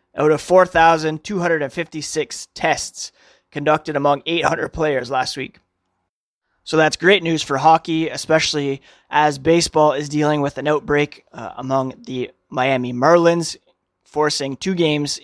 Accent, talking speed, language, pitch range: American, 125 wpm, English, 140-165 Hz